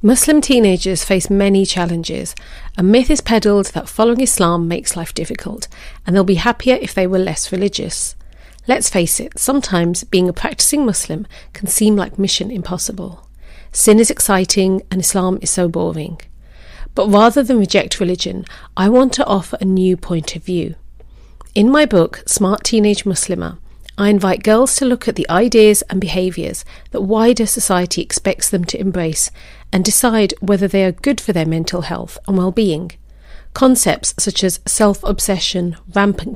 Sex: female